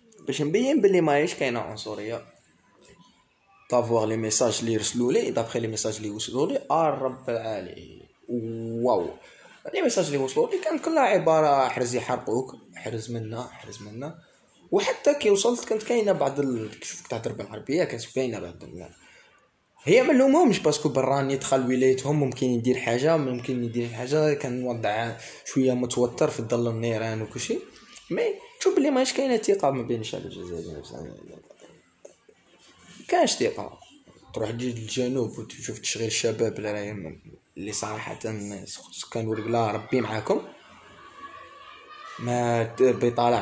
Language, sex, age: Arabic, male, 20-39